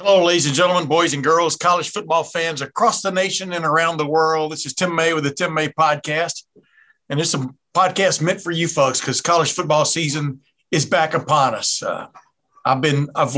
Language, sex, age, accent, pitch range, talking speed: English, male, 60-79, American, 140-165 Hz, 205 wpm